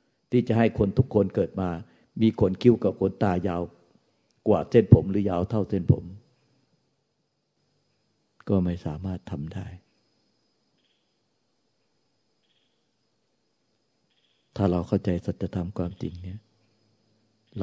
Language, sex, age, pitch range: Thai, male, 60-79, 90-110 Hz